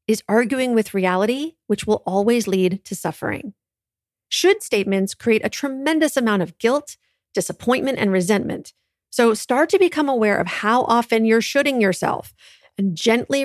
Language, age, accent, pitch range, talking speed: English, 40-59, American, 190-245 Hz, 150 wpm